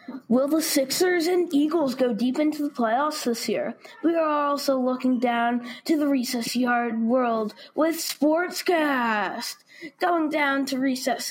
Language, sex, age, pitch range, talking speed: English, female, 20-39, 240-300 Hz, 150 wpm